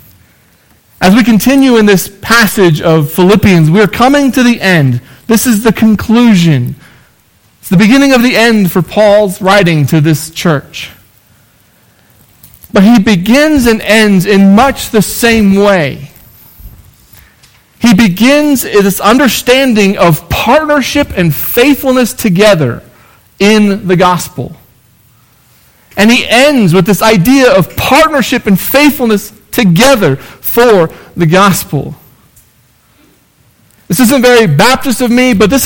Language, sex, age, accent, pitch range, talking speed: English, male, 40-59, American, 160-240 Hz, 125 wpm